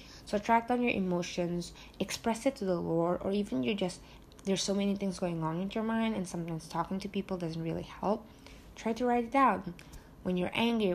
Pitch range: 170-210 Hz